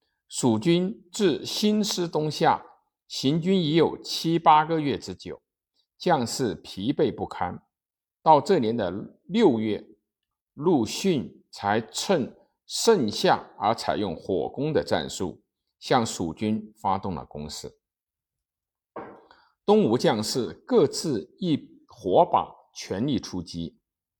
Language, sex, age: Chinese, male, 50-69